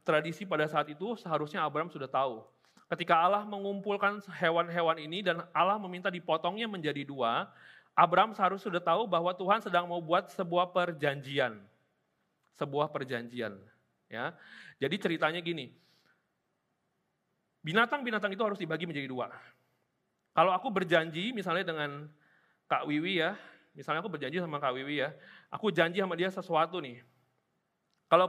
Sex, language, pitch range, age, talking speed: male, Indonesian, 150-190 Hz, 30-49, 135 wpm